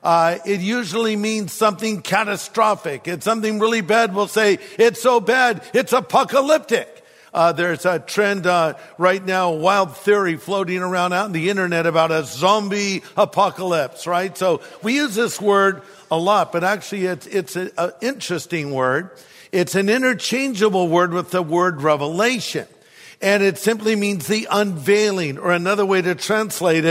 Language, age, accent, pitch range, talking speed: English, 50-69, American, 170-205 Hz, 160 wpm